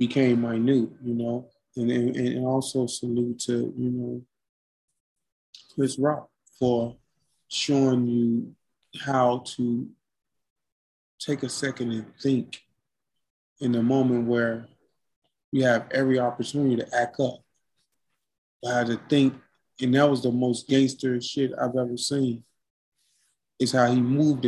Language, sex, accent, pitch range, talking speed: English, male, American, 115-135 Hz, 130 wpm